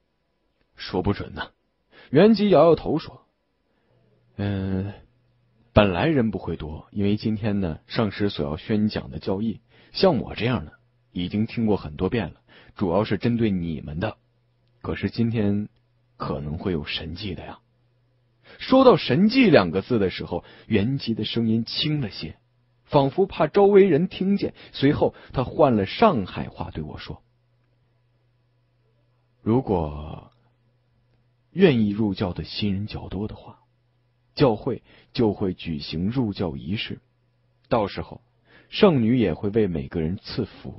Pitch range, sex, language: 95-120 Hz, male, Chinese